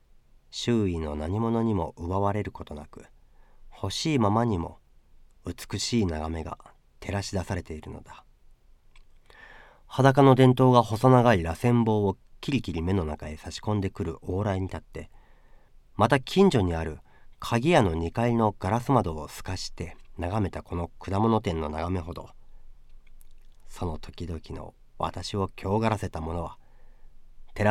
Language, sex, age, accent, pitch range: Japanese, male, 40-59, native, 85-120 Hz